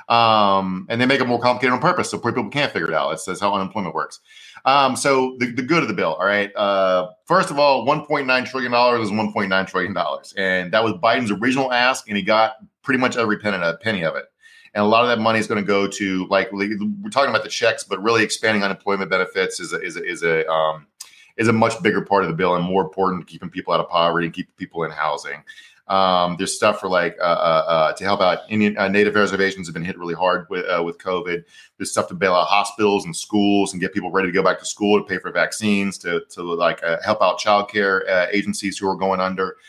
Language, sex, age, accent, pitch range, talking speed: English, male, 30-49, American, 95-120 Hz, 260 wpm